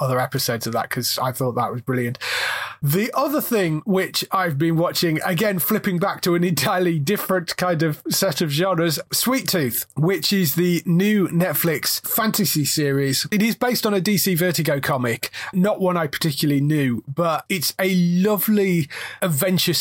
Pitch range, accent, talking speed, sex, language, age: 140-180 Hz, British, 170 wpm, male, English, 30-49